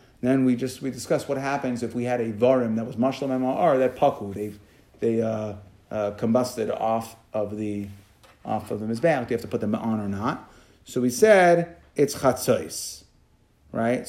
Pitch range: 115-145 Hz